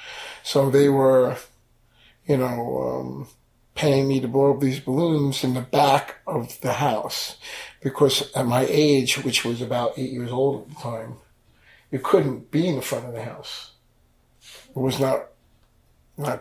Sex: male